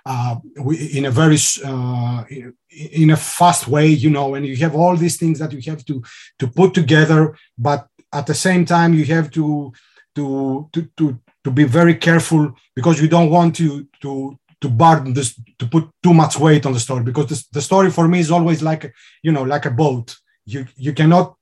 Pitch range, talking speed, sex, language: 135-165 Hz, 205 wpm, male, English